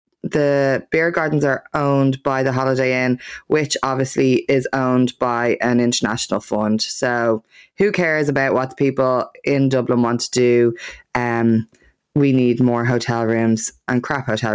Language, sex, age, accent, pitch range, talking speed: English, female, 20-39, Irish, 130-180 Hz, 155 wpm